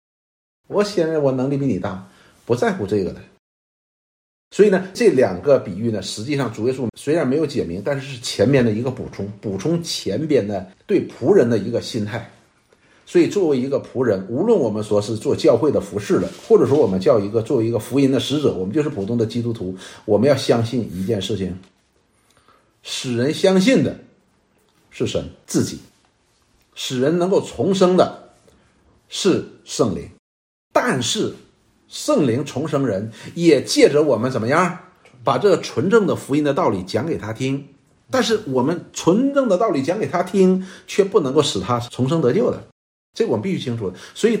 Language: Chinese